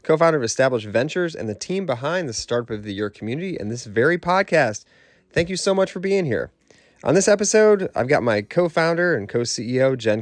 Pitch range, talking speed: 100-145 Hz, 205 wpm